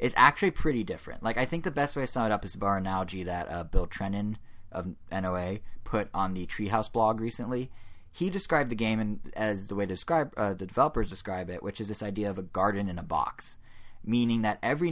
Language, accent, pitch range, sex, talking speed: English, American, 95-115 Hz, male, 235 wpm